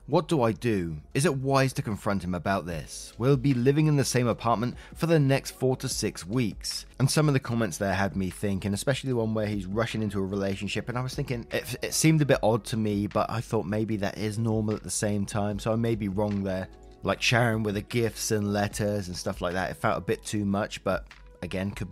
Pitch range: 95-125 Hz